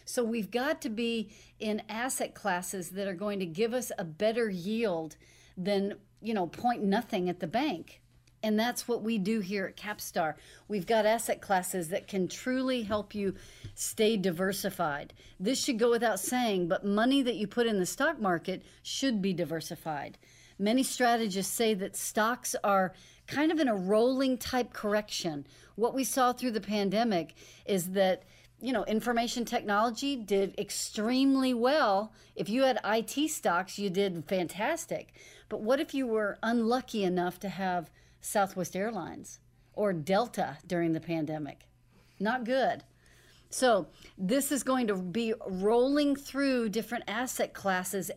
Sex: female